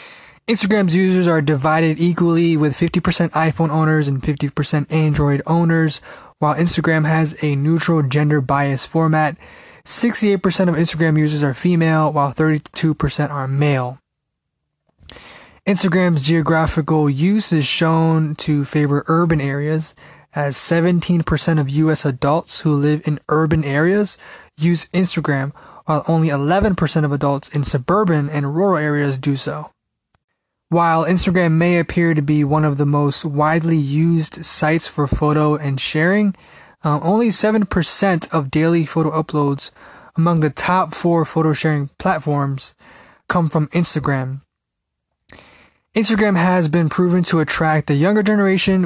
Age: 20-39